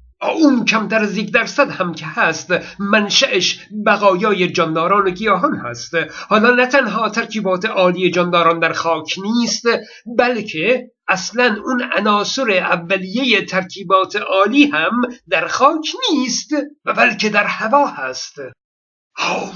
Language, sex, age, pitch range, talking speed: Persian, male, 50-69, 180-225 Hz, 120 wpm